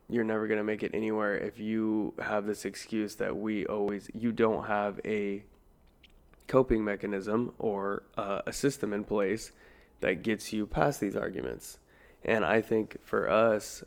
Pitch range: 100-115 Hz